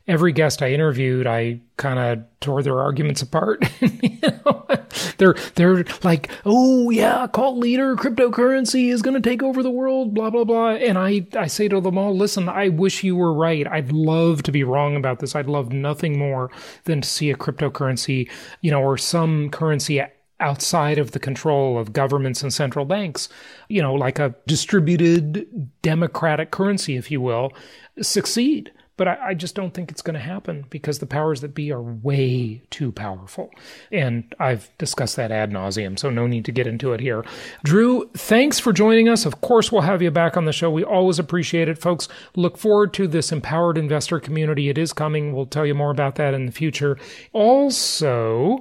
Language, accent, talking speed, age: English, American, 195 wpm, 30-49